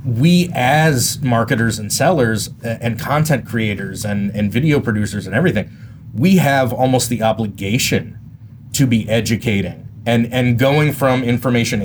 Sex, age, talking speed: male, 30-49, 135 wpm